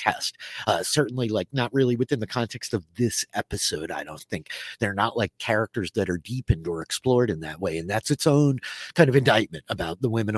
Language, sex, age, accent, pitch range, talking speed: English, male, 30-49, American, 100-135 Hz, 215 wpm